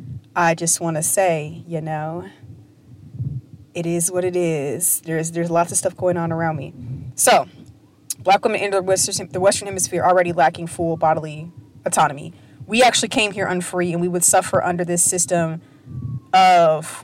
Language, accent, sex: English, American, female